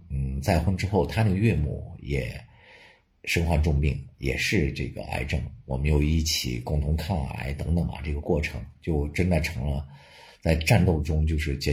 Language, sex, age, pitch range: Chinese, male, 50-69, 70-90 Hz